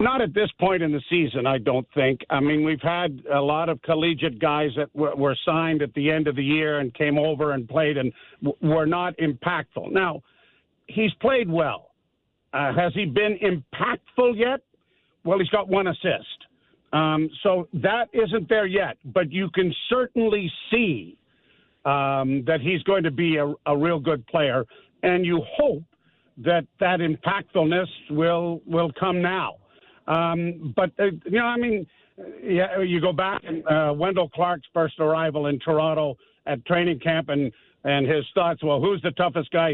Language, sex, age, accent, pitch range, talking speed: English, male, 50-69, American, 150-185 Hz, 170 wpm